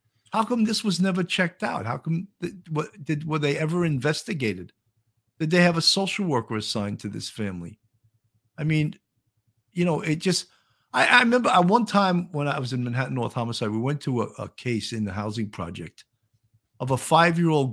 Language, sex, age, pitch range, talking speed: English, male, 50-69, 115-175 Hz, 195 wpm